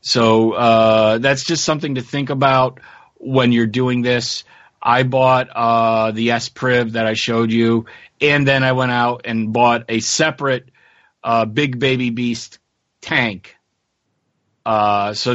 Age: 40-59